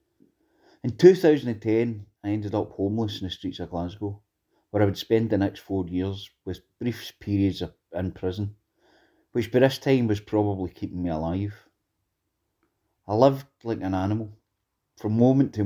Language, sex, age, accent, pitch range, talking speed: English, male, 30-49, British, 95-110 Hz, 155 wpm